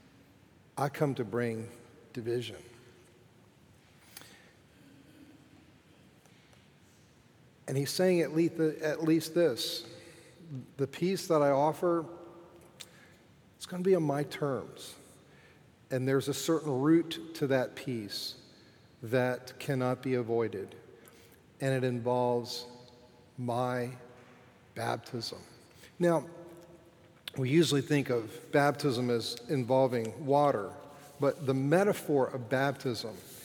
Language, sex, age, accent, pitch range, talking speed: English, male, 50-69, American, 125-155 Hz, 100 wpm